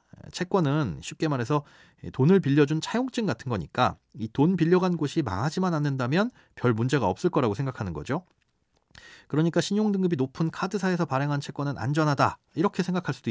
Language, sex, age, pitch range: Korean, male, 30-49, 115-170 Hz